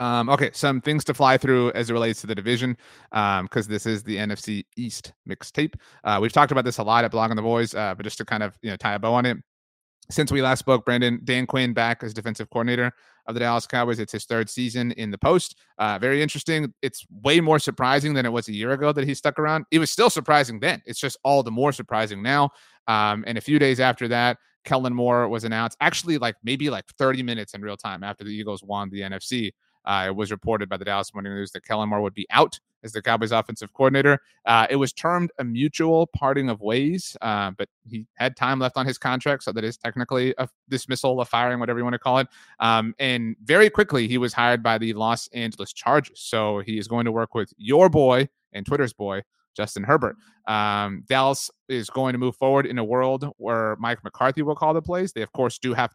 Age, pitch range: 30-49, 110-135 Hz